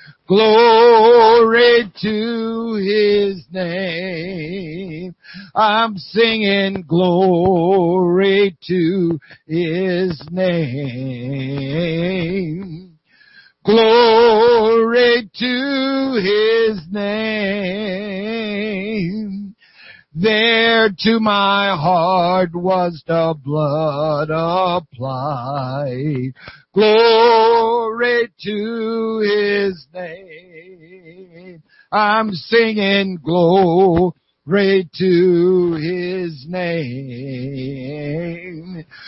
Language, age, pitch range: English, 60-79, 170-220 Hz